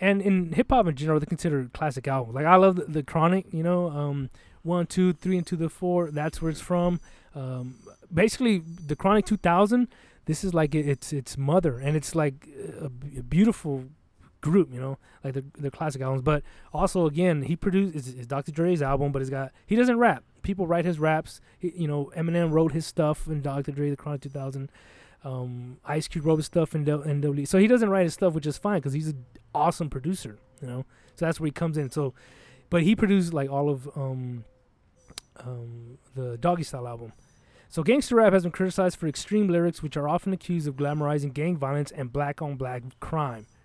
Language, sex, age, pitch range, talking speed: English, male, 20-39, 135-175 Hz, 210 wpm